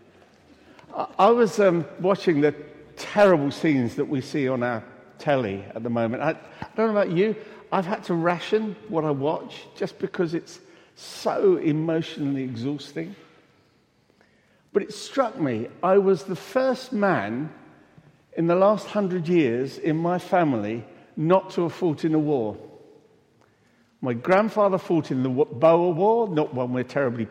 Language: English